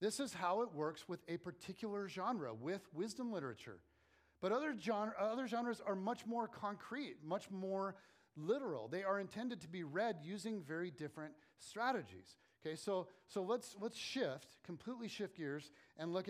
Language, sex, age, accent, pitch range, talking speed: English, male, 40-59, American, 155-200 Hz, 165 wpm